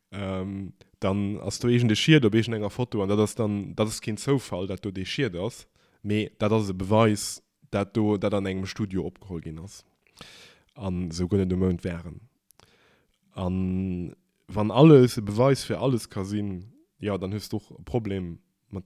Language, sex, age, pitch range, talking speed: English, male, 20-39, 95-110 Hz, 180 wpm